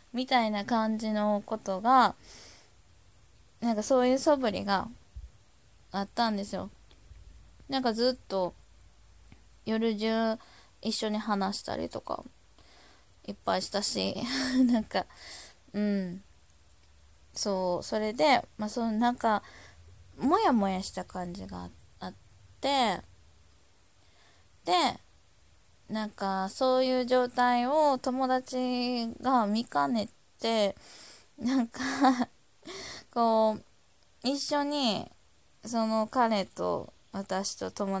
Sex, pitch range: female, 175-240 Hz